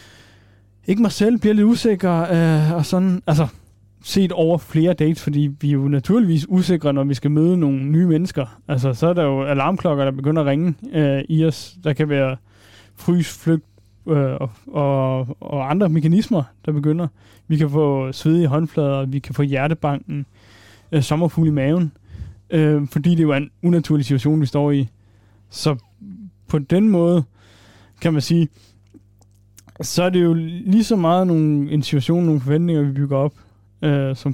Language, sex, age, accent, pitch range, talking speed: Danish, male, 20-39, native, 130-165 Hz, 175 wpm